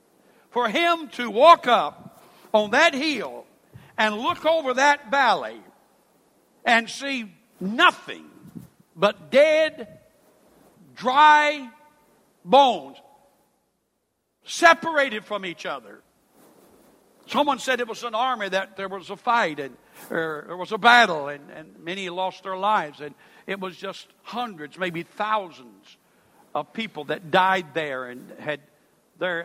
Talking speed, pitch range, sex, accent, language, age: 125 wpm, 155-240 Hz, male, American, English, 60-79